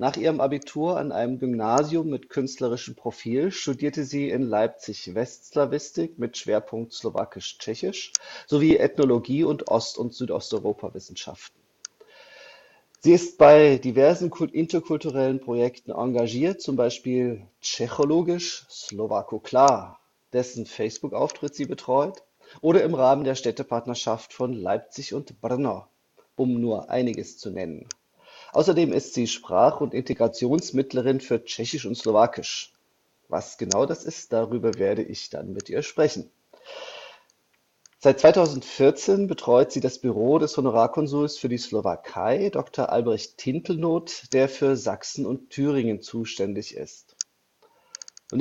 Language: Slovak